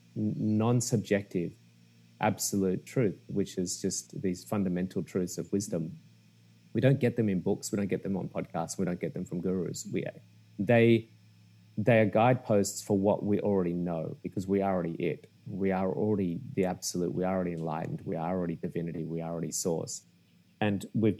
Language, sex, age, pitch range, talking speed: English, male, 30-49, 90-110 Hz, 180 wpm